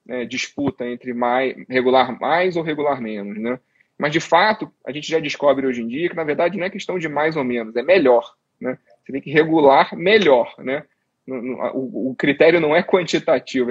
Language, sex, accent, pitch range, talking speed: Portuguese, male, Brazilian, 125-170 Hz, 190 wpm